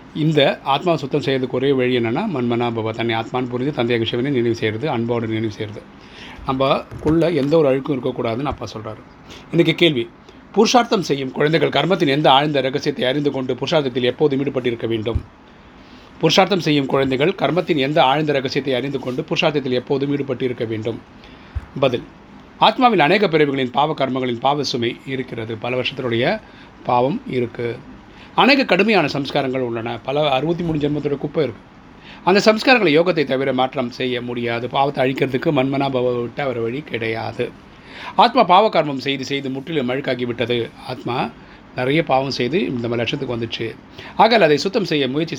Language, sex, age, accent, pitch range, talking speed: Tamil, male, 30-49, native, 125-150 Hz, 150 wpm